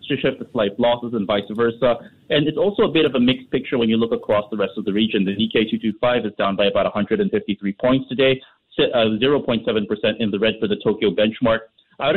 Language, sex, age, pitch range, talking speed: English, male, 30-49, 110-130 Hz, 215 wpm